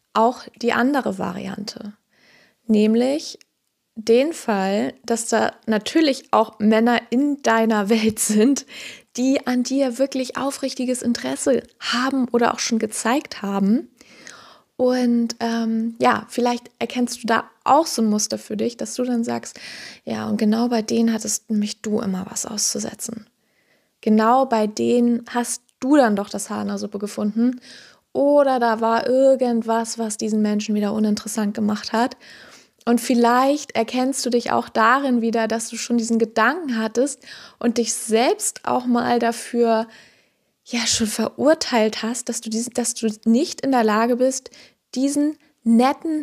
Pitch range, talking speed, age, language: 220-250 Hz, 145 wpm, 20-39, German